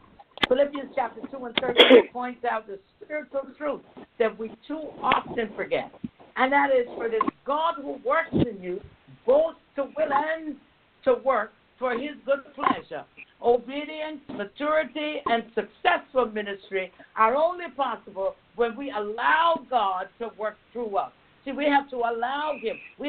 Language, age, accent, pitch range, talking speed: English, 60-79, American, 240-300 Hz, 150 wpm